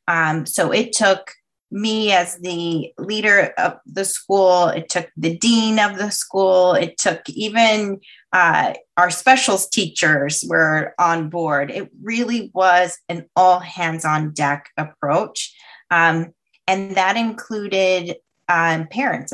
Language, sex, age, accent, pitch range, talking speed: English, female, 20-39, American, 160-195 Hz, 135 wpm